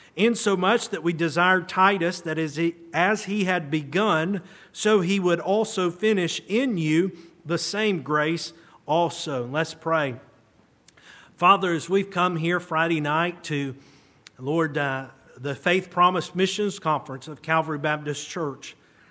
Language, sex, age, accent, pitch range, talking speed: English, male, 50-69, American, 145-170 Hz, 135 wpm